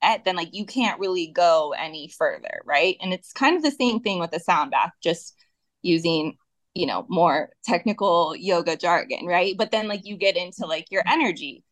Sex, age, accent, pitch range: female, 20-39, American, 160-200 Hz